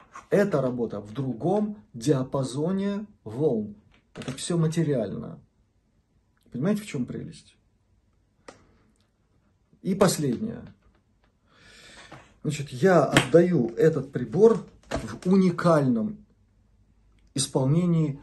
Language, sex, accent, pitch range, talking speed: Russian, male, native, 110-170 Hz, 75 wpm